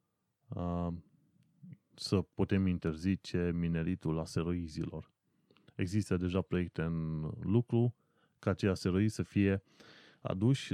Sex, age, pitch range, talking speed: male, 30-49, 90-115 Hz, 90 wpm